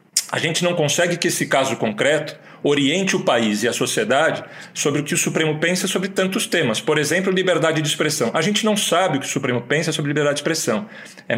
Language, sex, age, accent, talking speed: Portuguese, male, 40-59, Brazilian, 220 wpm